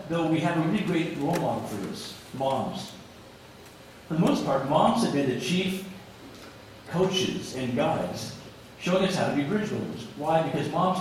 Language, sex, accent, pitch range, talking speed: English, male, American, 135-180 Hz, 180 wpm